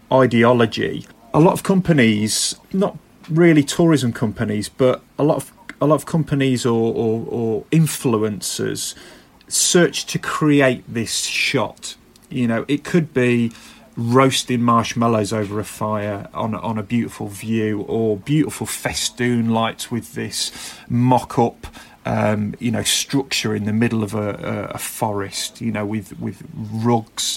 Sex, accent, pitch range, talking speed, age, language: male, British, 110-145 Hz, 140 wpm, 30-49, English